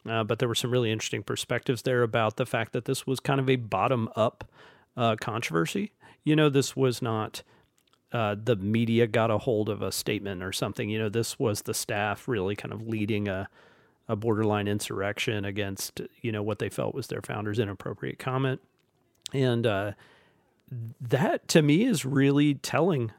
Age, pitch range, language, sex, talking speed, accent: 40-59, 105-130 Hz, English, male, 180 wpm, American